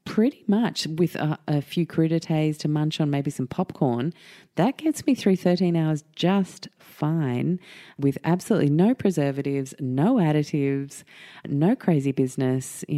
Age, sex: 30-49, female